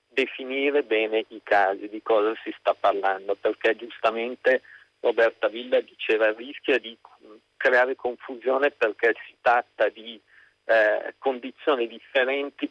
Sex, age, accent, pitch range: male, 50-69, native, 105-140 Hz